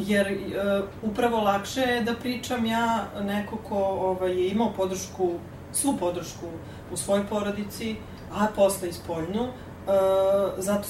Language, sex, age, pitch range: English, female, 30-49, 180-220 Hz